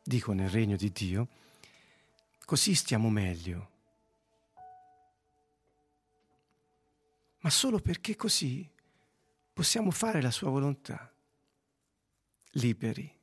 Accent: native